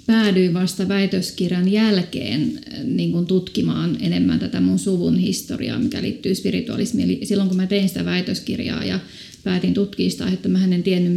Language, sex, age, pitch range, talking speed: Finnish, female, 30-49, 180-220 Hz, 150 wpm